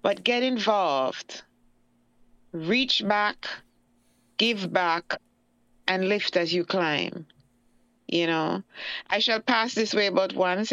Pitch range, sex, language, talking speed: 175-215 Hz, female, English, 115 wpm